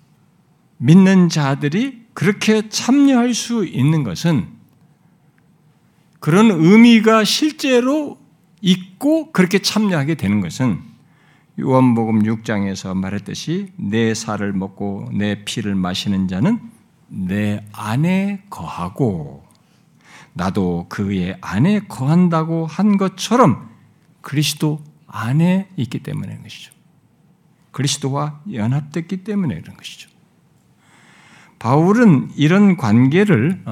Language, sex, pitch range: Korean, male, 130-200 Hz